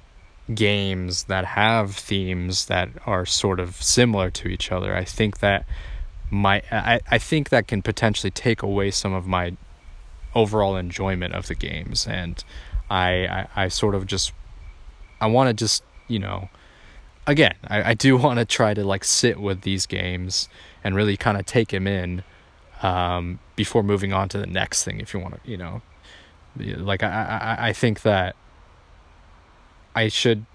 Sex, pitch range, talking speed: male, 90-110 Hz, 170 wpm